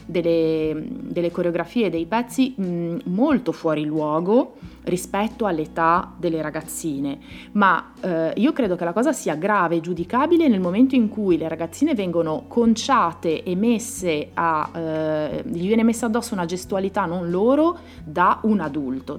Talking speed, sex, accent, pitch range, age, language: 145 wpm, female, native, 170-240 Hz, 30-49, Italian